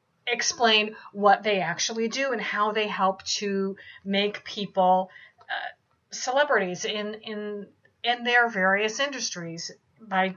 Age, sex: 50-69, female